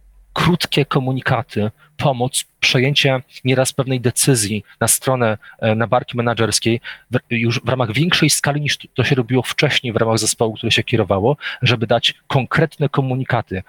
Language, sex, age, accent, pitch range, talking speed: Polish, male, 40-59, native, 110-135 Hz, 145 wpm